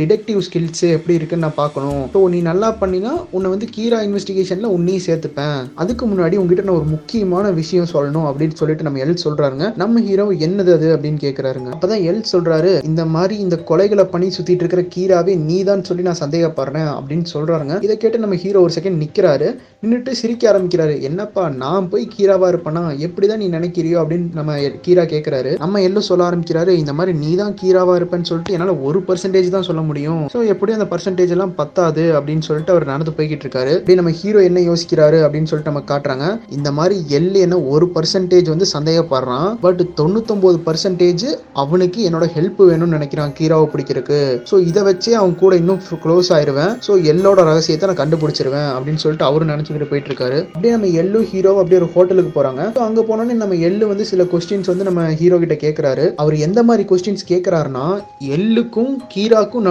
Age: 20-39